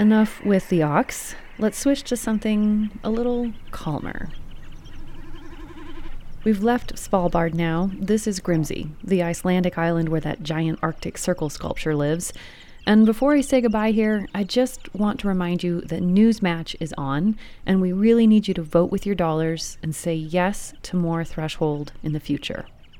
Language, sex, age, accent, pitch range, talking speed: English, female, 30-49, American, 175-225 Hz, 165 wpm